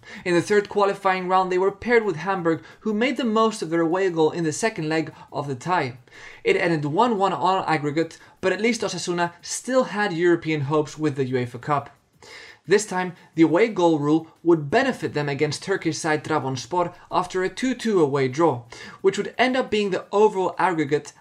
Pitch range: 150-195 Hz